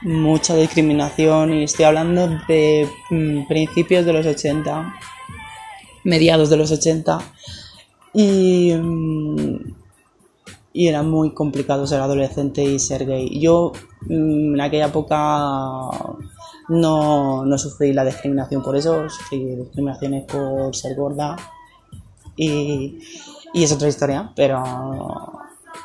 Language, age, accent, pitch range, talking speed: Spanish, 20-39, Spanish, 140-175 Hz, 105 wpm